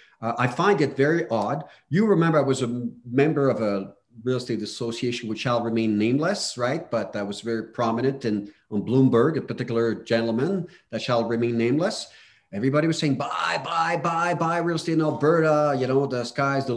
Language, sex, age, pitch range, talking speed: English, male, 40-59, 115-155 Hz, 195 wpm